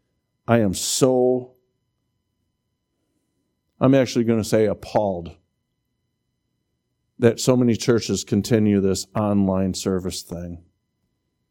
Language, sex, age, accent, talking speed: English, male, 50-69, American, 95 wpm